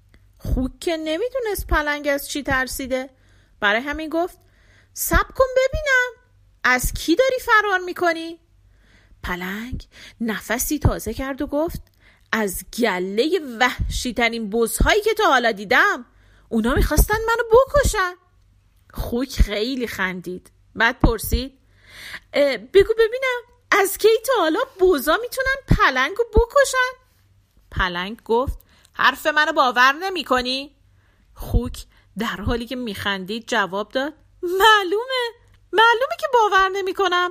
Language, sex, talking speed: Persian, female, 120 wpm